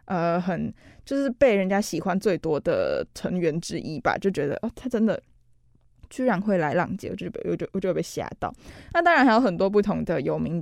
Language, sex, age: Chinese, female, 20-39